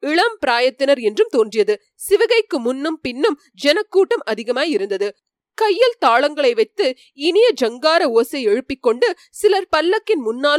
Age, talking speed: 30-49, 115 wpm